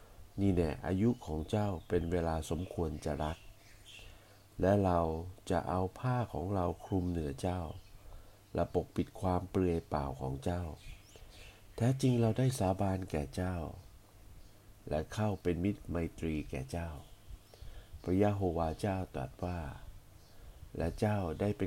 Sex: male